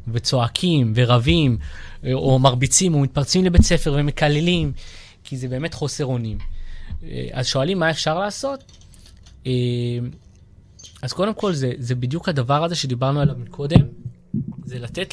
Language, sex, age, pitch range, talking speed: Hebrew, male, 20-39, 115-150 Hz, 125 wpm